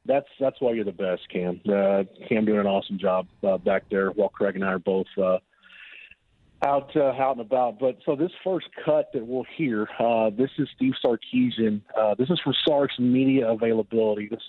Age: 40-59